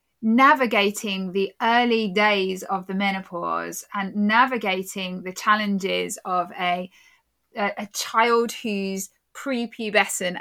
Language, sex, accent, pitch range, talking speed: English, female, British, 180-225 Hz, 105 wpm